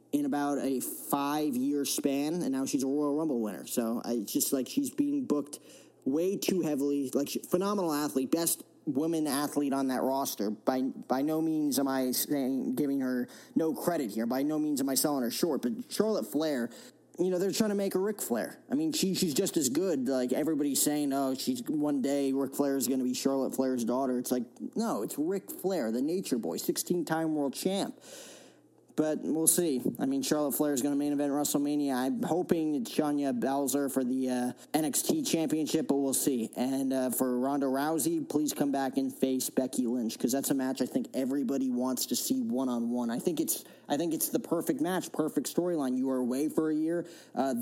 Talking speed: 210 wpm